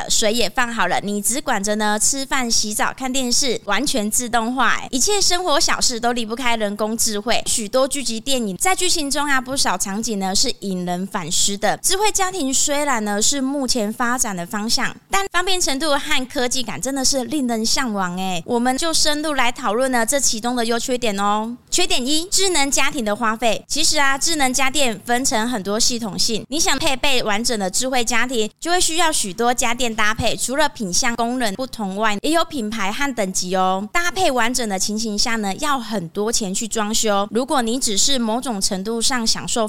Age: 20-39